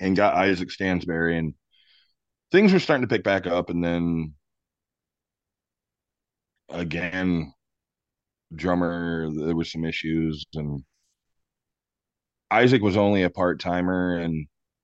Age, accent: 20-39, American